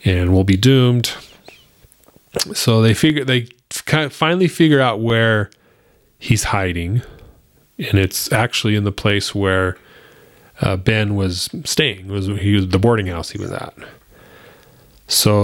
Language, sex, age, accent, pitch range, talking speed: English, male, 30-49, American, 95-120 Hz, 150 wpm